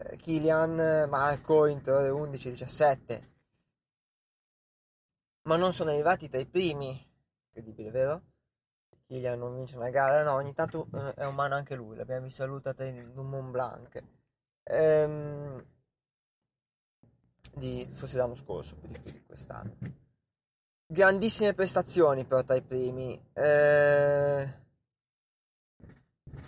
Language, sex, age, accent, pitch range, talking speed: Italian, male, 20-39, native, 130-160 Hz, 110 wpm